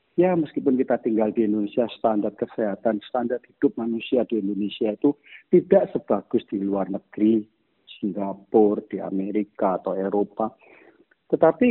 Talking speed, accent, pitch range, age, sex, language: 130 wpm, native, 105-165 Hz, 40-59, male, Indonesian